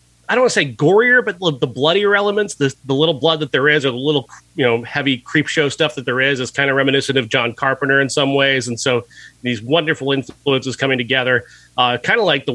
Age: 30-49